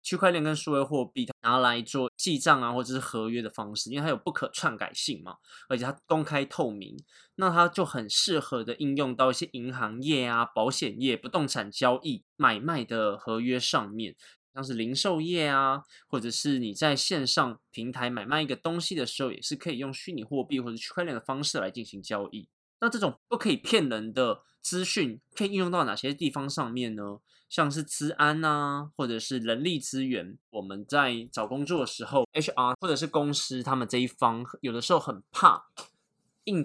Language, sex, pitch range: Chinese, male, 120-155 Hz